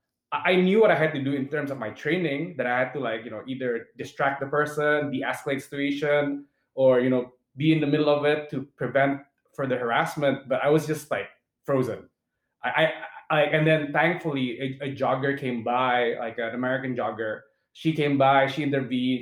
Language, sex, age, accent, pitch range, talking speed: English, male, 20-39, Filipino, 130-155 Hz, 205 wpm